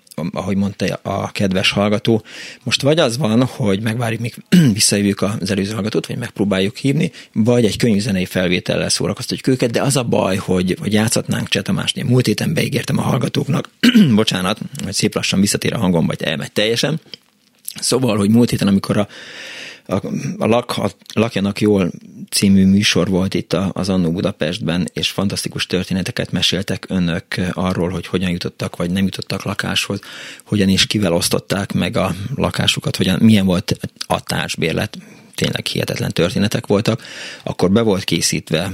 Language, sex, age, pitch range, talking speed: Hungarian, male, 30-49, 95-120 Hz, 155 wpm